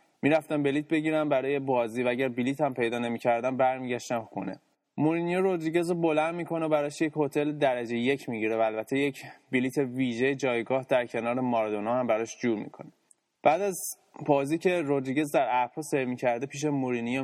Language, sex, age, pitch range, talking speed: Persian, male, 20-39, 120-150 Hz, 175 wpm